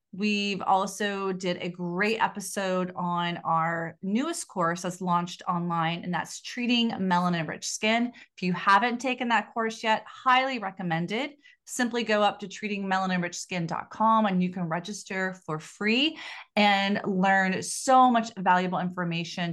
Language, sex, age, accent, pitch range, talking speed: English, female, 30-49, American, 180-225 Hz, 135 wpm